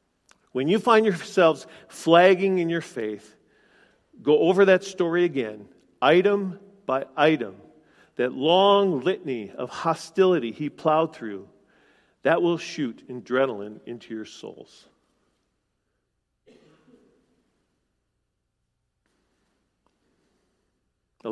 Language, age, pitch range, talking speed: English, 50-69, 120-180 Hz, 90 wpm